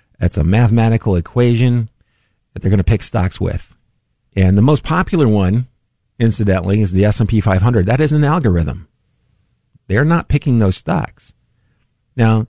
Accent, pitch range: American, 100-120 Hz